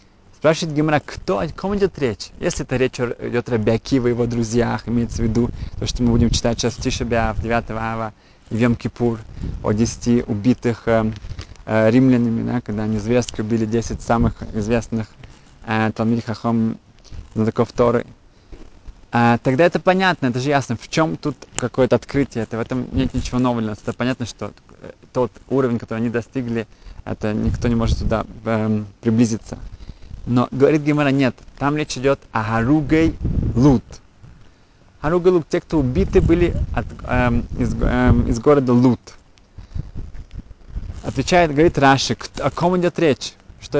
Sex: male